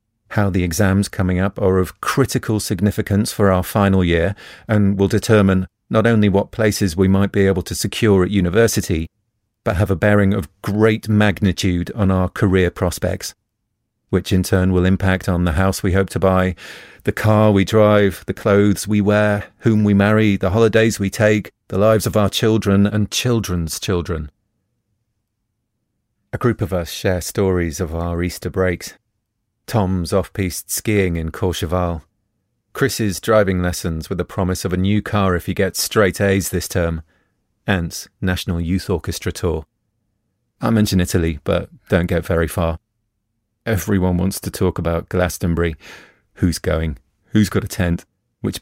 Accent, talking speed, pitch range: British, 165 wpm, 90-105 Hz